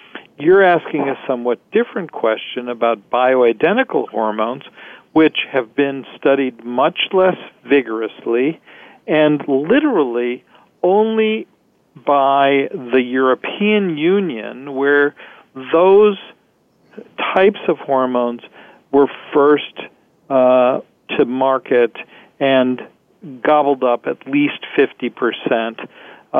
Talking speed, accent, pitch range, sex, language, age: 90 wpm, American, 125-160 Hz, male, English, 50-69